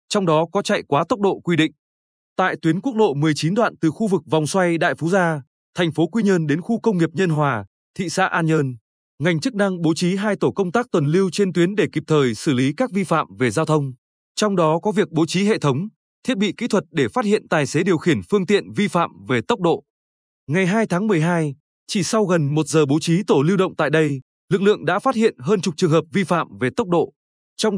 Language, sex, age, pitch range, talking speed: Vietnamese, male, 20-39, 155-200 Hz, 255 wpm